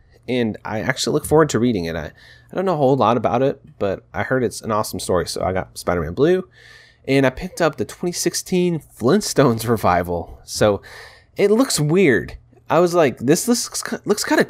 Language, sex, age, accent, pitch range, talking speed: English, male, 20-39, American, 115-170 Hz, 205 wpm